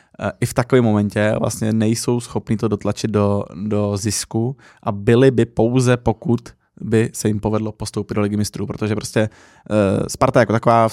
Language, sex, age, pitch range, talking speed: Czech, male, 20-39, 105-115 Hz, 175 wpm